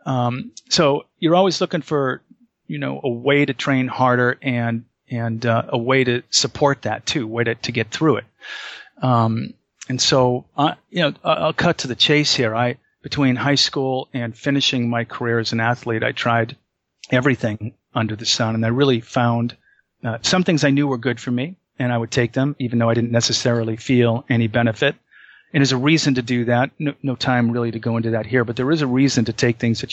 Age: 40-59